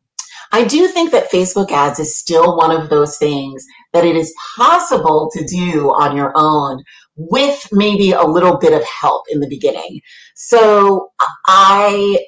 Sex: female